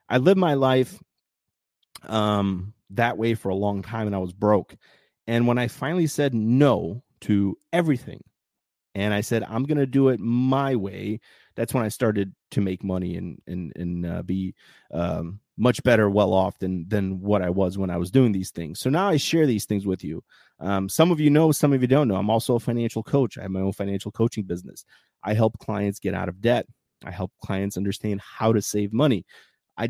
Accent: American